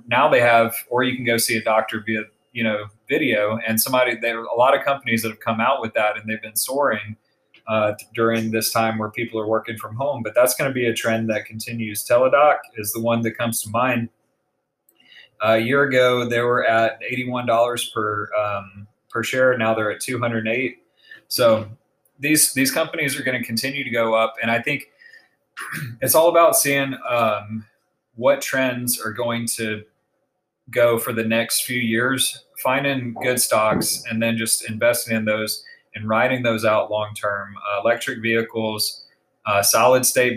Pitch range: 110-125 Hz